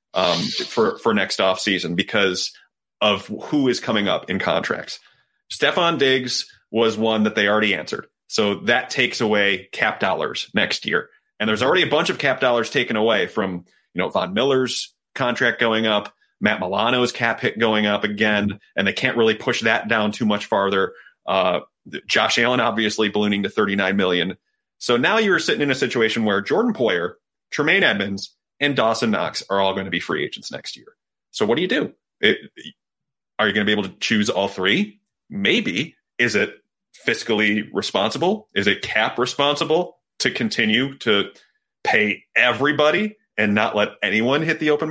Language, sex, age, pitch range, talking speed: English, male, 30-49, 105-140 Hz, 175 wpm